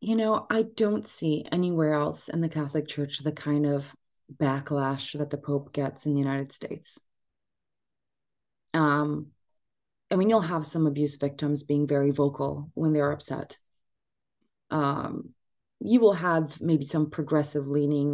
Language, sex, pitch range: English, female, 140-185 Hz